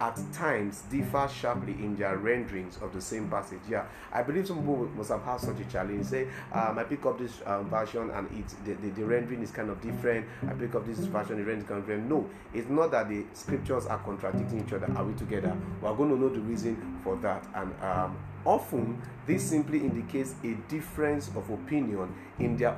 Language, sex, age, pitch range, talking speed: English, male, 30-49, 100-135 Hz, 220 wpm